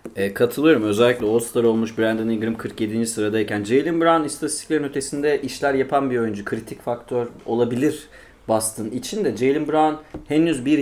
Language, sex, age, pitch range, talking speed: Turkish, male, 30-49, 120-165 Hz, 155 wpm